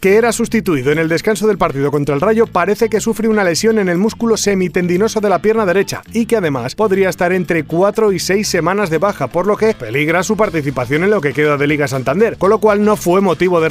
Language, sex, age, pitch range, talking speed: Spanish, male, 30-49, 155-215 Hz, 245 wpm